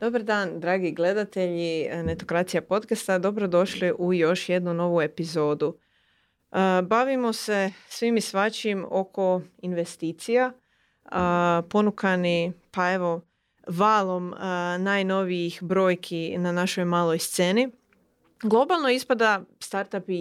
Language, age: Croatian, 30-49